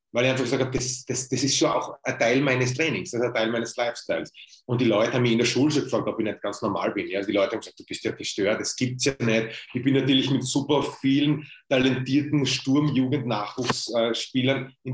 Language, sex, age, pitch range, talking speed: German, male, 30-49, 120-135 Hz, 240 wpm